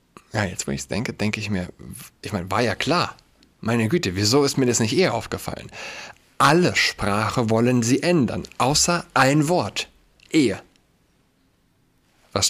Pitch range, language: 95-115 Hz, German